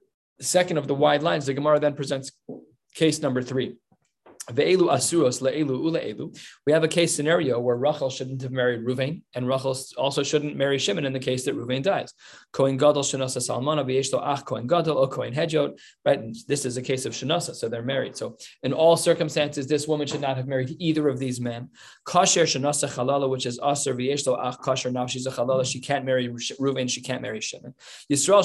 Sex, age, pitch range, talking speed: male, 20-39, 130-155 Hz, 170 wpm